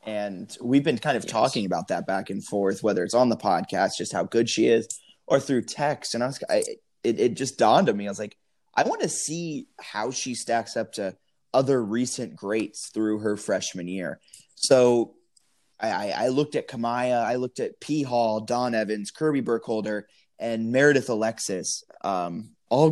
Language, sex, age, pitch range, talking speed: English, male, 20-39, 105-135 Hz, 190 wpm